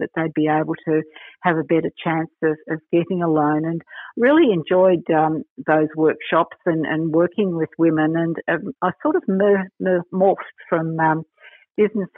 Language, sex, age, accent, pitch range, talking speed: English, female, 50-69, Australian, 160-185 Hz, 170 wpm